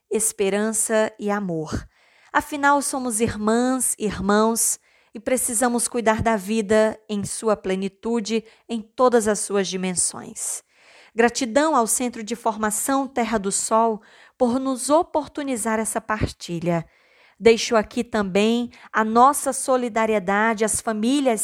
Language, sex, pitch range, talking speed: Portuguese, female, 215-260 Hz, 120 wpm